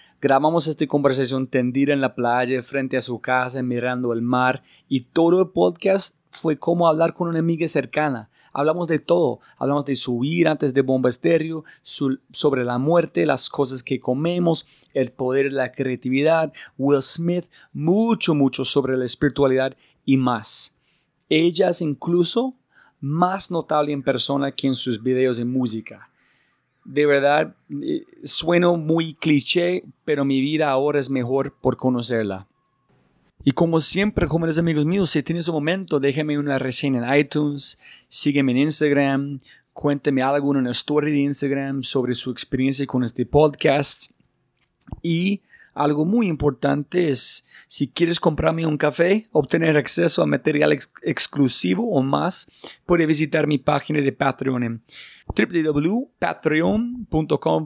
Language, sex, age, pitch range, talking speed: Spanish, male, 30-49, 130-160 Hz, 145 wpm